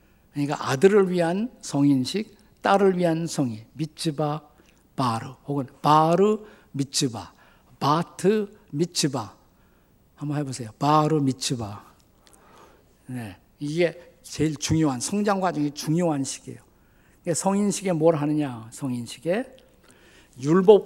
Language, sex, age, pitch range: Korean, male, 50-69, 135-175 Hz